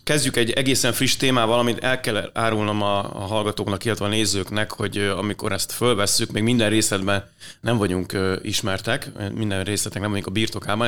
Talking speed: 165 wpm